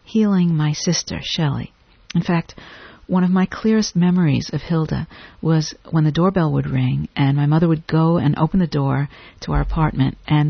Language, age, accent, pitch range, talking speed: English, 50-69, American, 150-185 Hz, 185 wpm